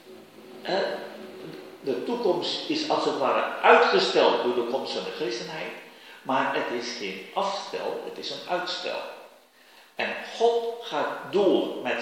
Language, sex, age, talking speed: Danish, male, 50-69, 135 wpm